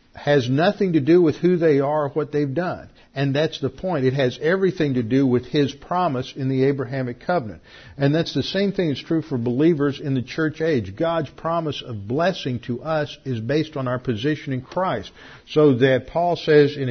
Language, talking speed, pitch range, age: English, 210 wpm, 120-150 Hz, 50-69